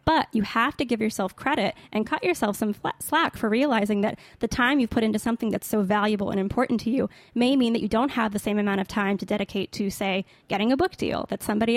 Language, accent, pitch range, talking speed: English, American, 205-245 Hz, 260 wpm